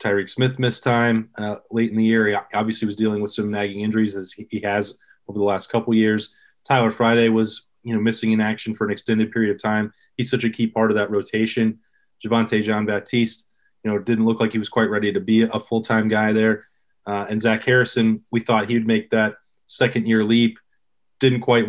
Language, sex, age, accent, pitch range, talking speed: English, male, 20-39, American, 110-120 Hz, 215 wpm